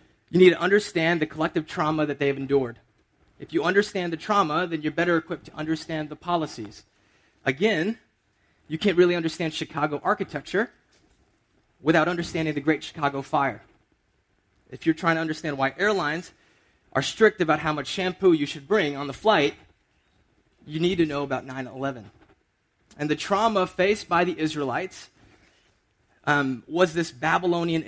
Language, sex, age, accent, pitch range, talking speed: English, male, 30-49, American, 140-170 Hz, 155 wpm